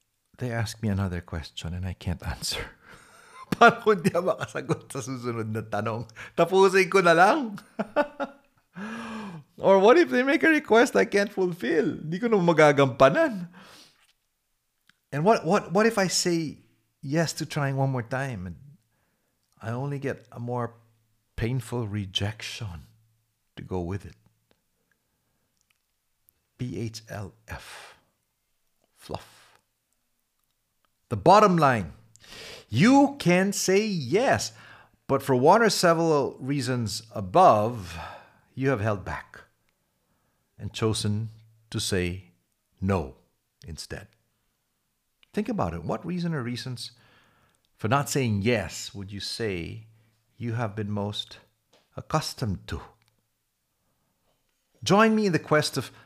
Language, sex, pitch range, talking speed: English, male, 110-180 Hz, 110 wpm